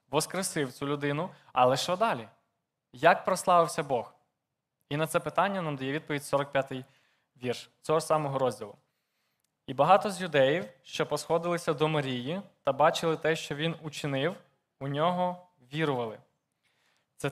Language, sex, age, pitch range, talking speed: Ukrainian, male, 20-39, 140-170 Hz, 135 wpm